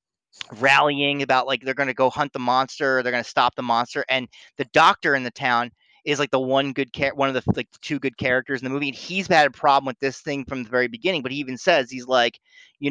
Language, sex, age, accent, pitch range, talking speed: English, male, 30-49, American, 130-165 Hz, 270 wpm